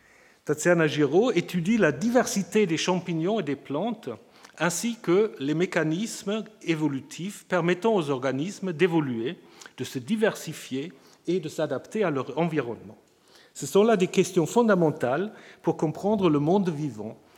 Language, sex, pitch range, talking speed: French, male, 145-190 Hz, 135 wpm